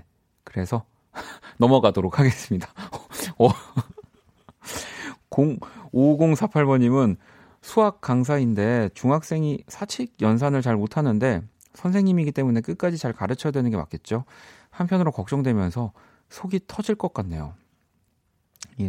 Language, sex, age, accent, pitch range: Korean, male, 40-59, native, 95-130 Hz